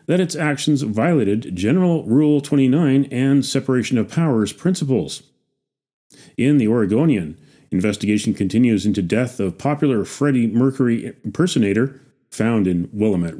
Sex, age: male, 40-59